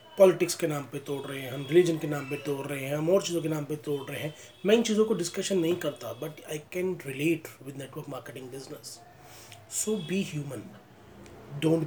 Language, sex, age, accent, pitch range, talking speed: Hindi, male, 30-49, native, 130-170 Hz, 215 wpm